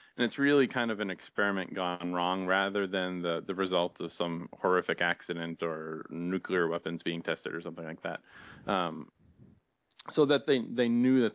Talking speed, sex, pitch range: 180 wpm, male, 85-100 Hz